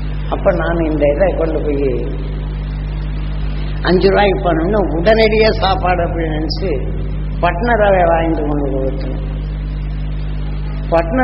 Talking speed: 95 wpm